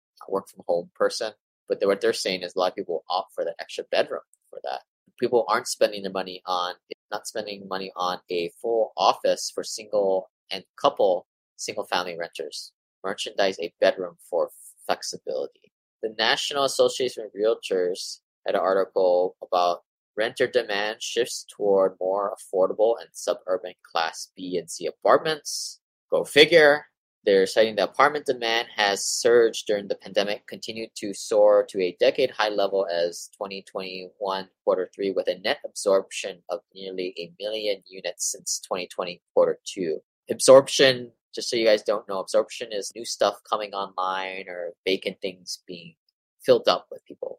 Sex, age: male, 20-39